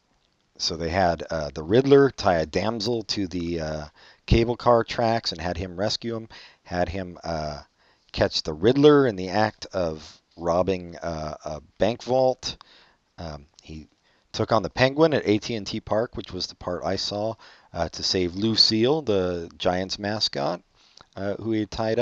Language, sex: English, male